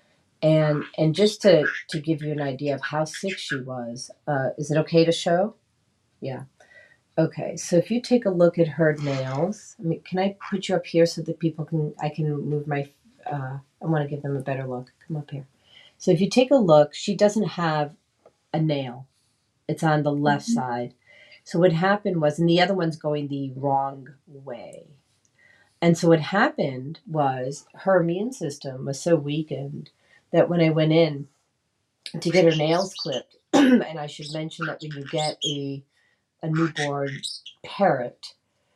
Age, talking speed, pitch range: 40-59, 185 wpm, 145-170 Hz